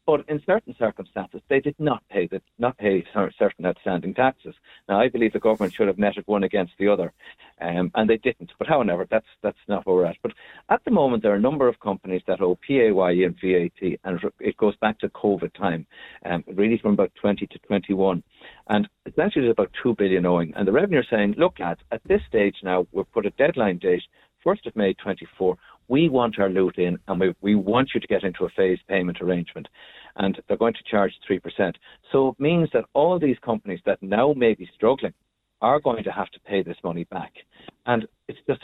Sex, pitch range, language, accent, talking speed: male, 95-125 Hz, English, Irish, 220 wpm